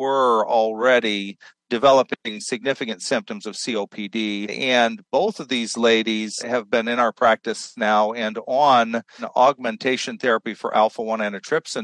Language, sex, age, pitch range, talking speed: English, male, 50-69, 110-130 Hz, 125 wpm